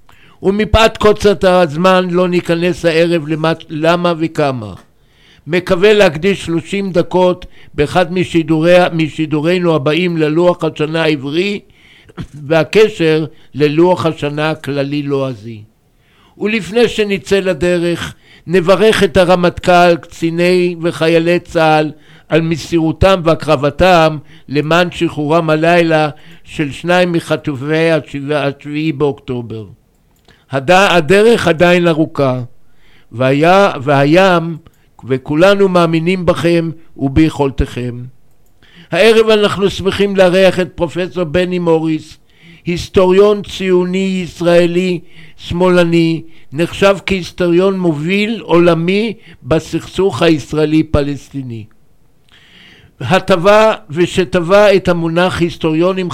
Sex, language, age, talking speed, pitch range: male, Hebrew, 60-79, 80 wpm, 155-180 Hz